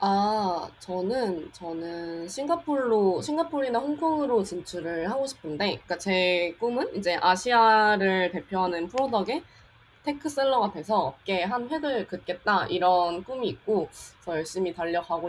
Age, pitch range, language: 20-39, 175-245 Hz, Korean